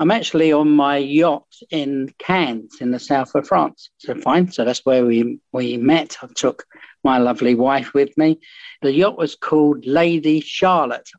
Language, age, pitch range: English, 60-79, 130-165 Hz